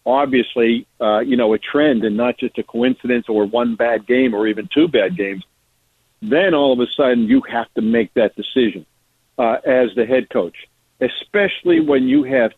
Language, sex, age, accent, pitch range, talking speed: English, male, 50-69, American, 115-135 Hz, 190 wpm